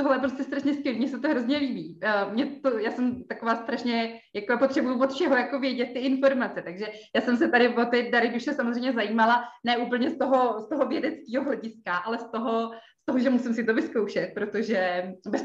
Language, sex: Czech, female